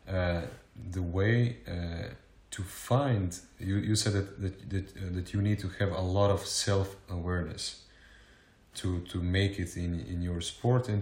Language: Croatian